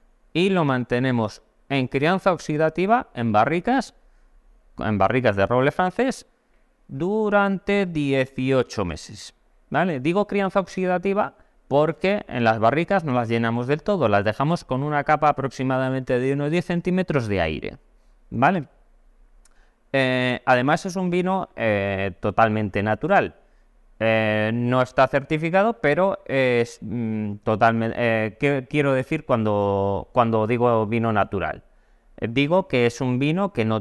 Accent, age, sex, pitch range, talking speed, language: Spanish, 30-49, male, 110-175 Hz, 130 wpm, Spanish